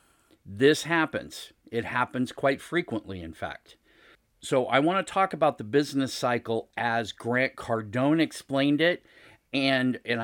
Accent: American